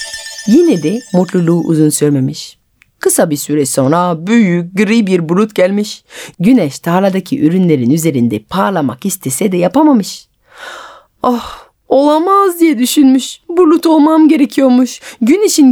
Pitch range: 165-265 Hz